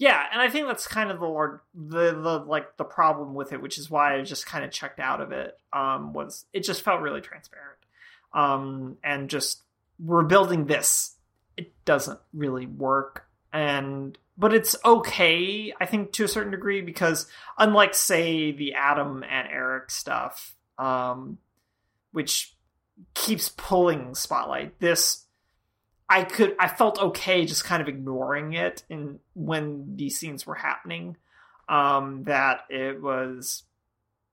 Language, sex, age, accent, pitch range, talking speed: English, male, 30-49, American, 140-180 Hz, 155 wpm